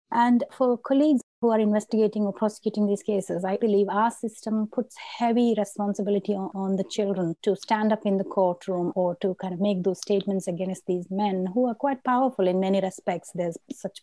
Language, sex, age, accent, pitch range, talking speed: English, female, 30-49, Indian, 190-220 Hz, 195 wpm